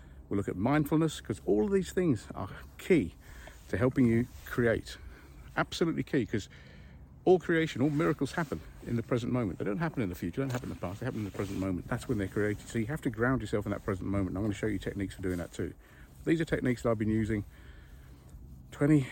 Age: 50-69